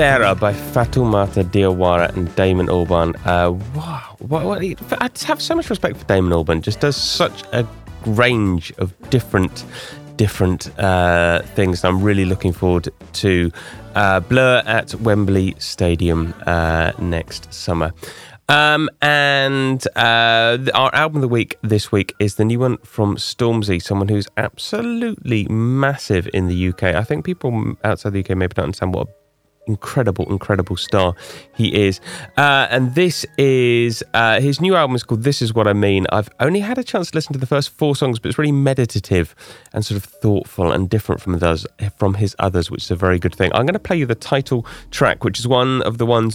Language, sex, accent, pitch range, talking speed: English, male, British, 95-130 Hz, 185 wpm